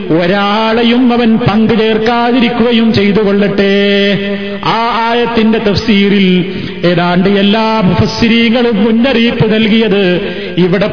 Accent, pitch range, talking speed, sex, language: native, 190-235 Hz, 75 wpm, male, Malayalam